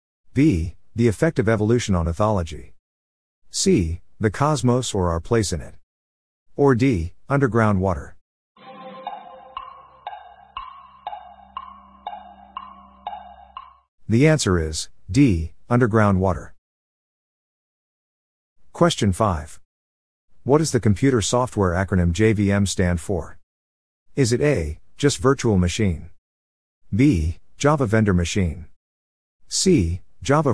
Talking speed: 95 wpm